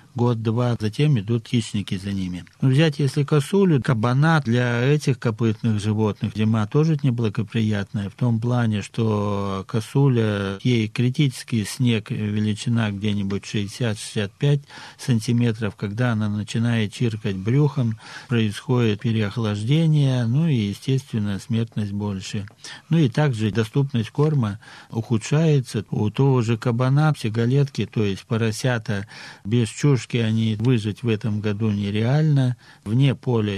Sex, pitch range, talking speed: male, 105-130 Hz, 115 wpm